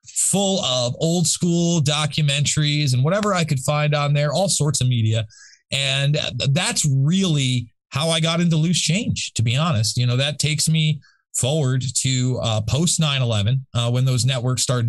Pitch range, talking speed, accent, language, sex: 120-150 Hz, 175 wpm, American, English, male